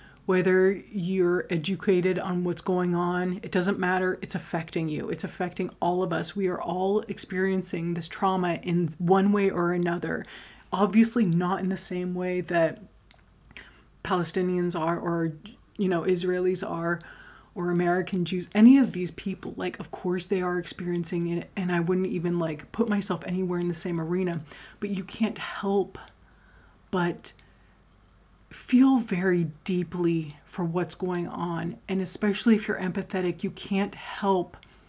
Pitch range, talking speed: 175-195 Hz, 155 wpm